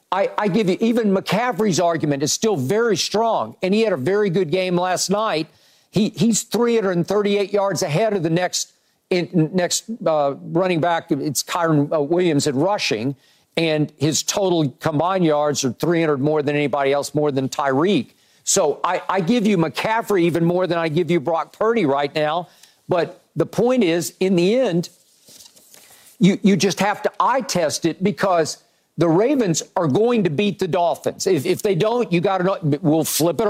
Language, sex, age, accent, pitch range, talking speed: English, male, 50-69, American, 155-195 Hz, 185 wpm